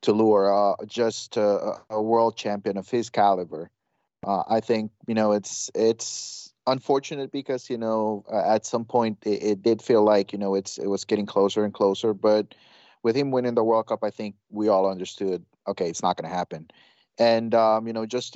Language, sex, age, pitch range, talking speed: English, male, 30-49, 100-125 Hz, 205 wpm